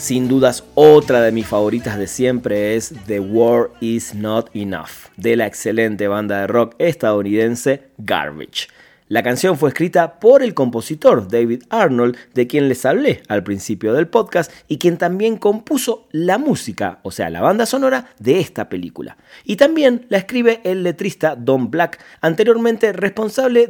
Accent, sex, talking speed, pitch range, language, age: Argentinian, male, 160 wpm, 120-200 Hz, Spanish, 30-49